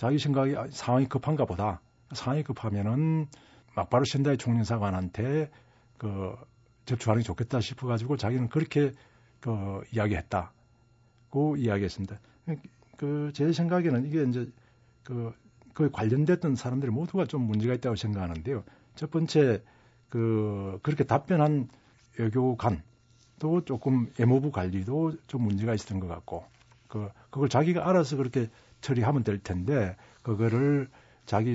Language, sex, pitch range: Korean, male, 115-145 Hz